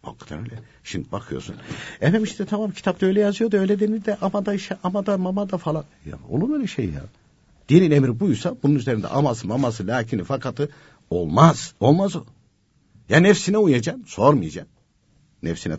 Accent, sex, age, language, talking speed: native, male, 60-79, Turkish, 170 wpm